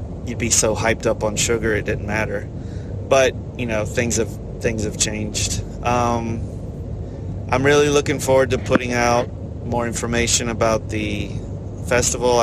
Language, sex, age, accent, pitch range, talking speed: English, male, 30-49, American, 105-120 Hz, 150 wpm